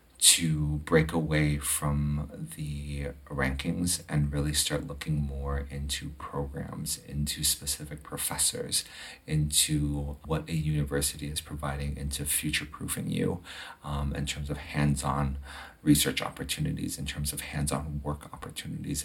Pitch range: 75-80 Hz